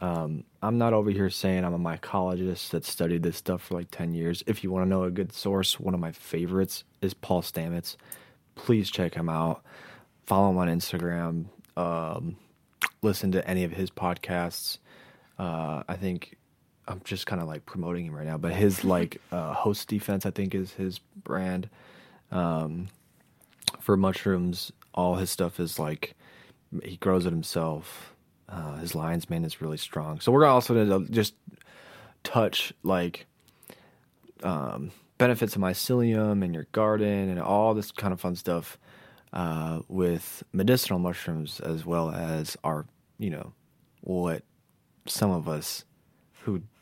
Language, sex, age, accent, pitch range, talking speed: English, male, 20-39, American, 85-95 Hz, 160 wpm